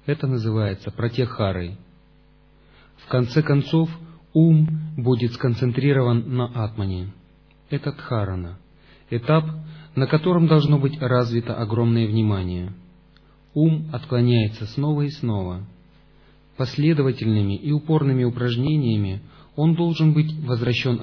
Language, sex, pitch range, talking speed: Russian, male, 110-140 Hz, 95 wpm